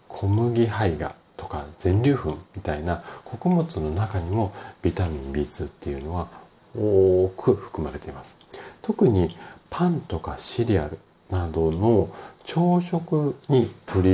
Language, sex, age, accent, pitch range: Japanese, male, 40-59, native, 80-115 Hz